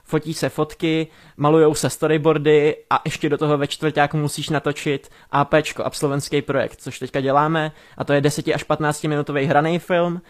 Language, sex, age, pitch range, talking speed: Czech, male, 20-39, 145-160 Hz, 175 wpm